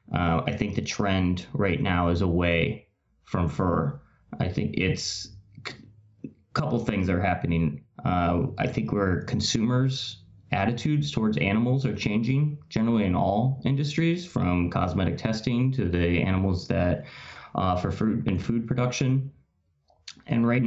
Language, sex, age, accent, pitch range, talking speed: English, male, 20-39, American, 90-115 Hz, 140 wpm